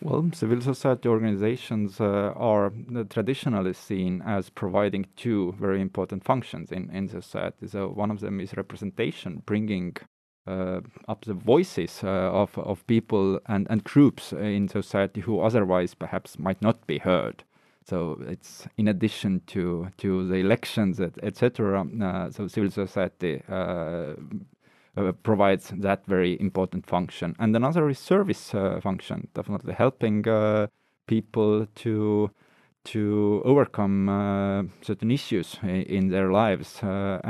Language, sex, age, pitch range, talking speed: English, male, 30-49, 95-110 Hz, 135 wpm